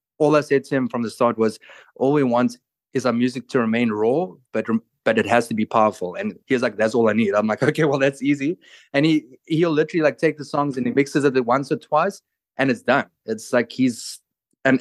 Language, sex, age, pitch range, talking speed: English, male, 20-39, 110-135 Hz, 245 wpm